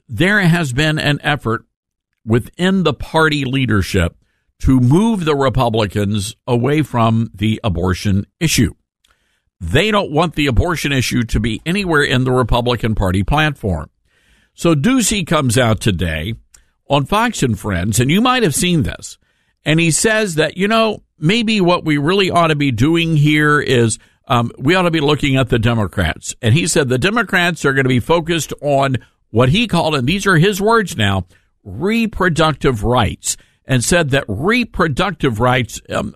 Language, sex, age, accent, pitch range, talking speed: English, male, 50-69, American, 115-170 Hz, 165 wpm